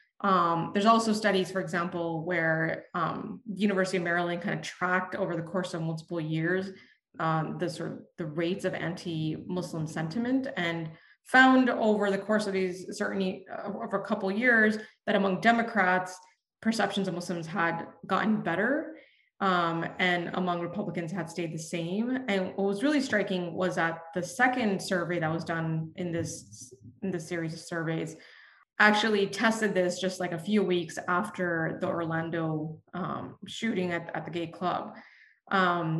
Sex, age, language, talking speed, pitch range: female, 20-39, English, 165 wpm, 170-205 Hz